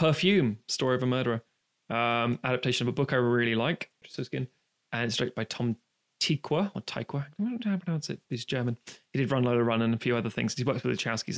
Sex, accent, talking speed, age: male, British, 235 wpm, 20-39